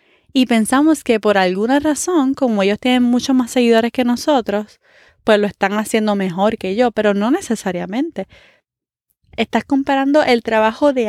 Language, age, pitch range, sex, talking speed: Spanish, 20-39, 200-255 Hz, female, 155 wpm